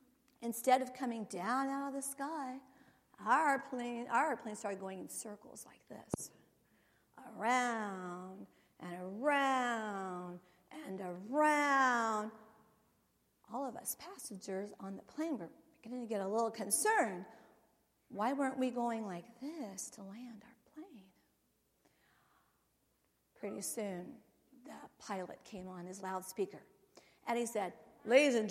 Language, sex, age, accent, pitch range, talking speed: English, female, 40-59, American, 205-270 Hz, 125 wpm